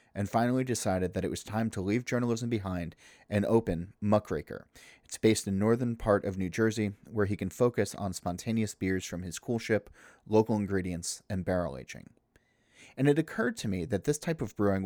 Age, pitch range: 30-49, 95-115 Hz